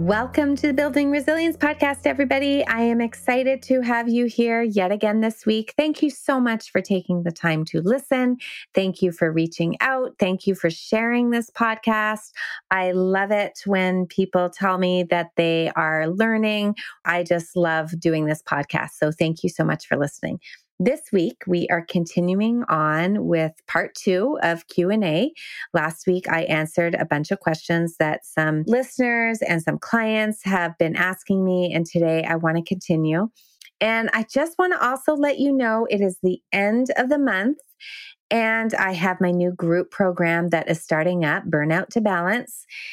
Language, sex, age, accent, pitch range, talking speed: English, female, 30-49, American, 165-225 Hz, 180 wpm